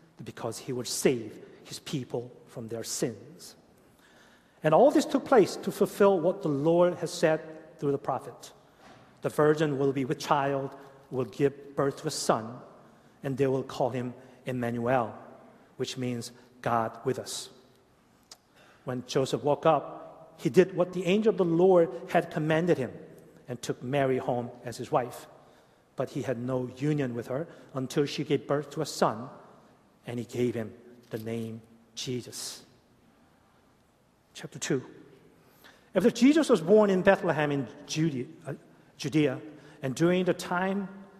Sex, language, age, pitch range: male, Korean, 40-59, 130-170 Hz